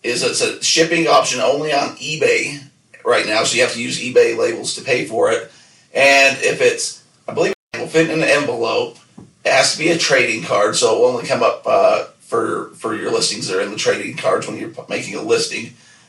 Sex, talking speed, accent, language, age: male, 230 wpm, American, English, 40-59